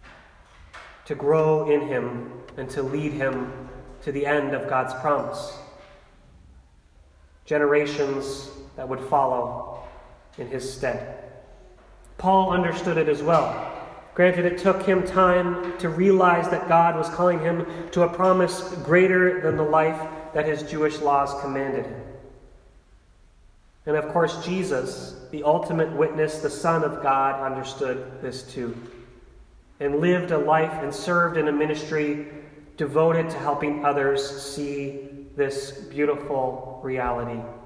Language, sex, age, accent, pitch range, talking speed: English, male, 30-49, American, 135-165 Hz, 130 wpm